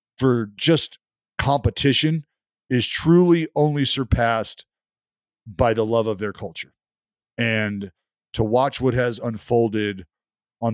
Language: English